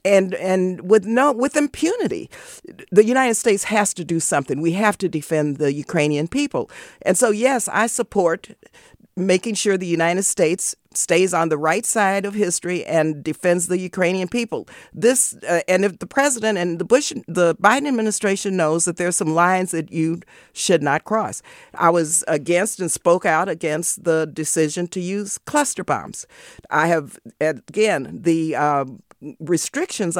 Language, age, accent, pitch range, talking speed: English, 50-69, American, 160-210 Hz, 165 wpm